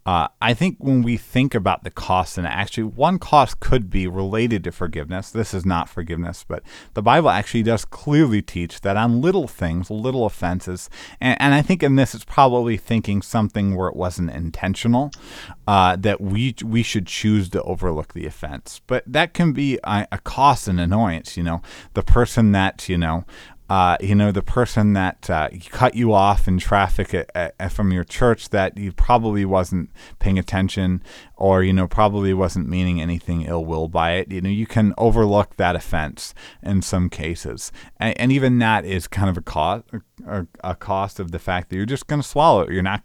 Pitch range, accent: 90-115 Hz, American